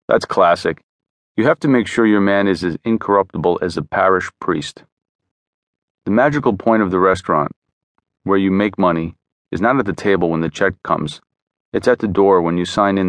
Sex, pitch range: male, 95-115 Hz